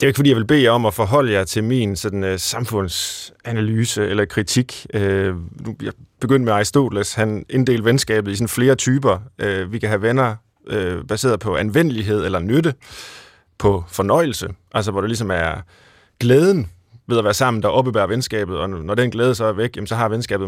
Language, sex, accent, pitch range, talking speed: Danish, male, native, 105-130 Hz, 180 wpm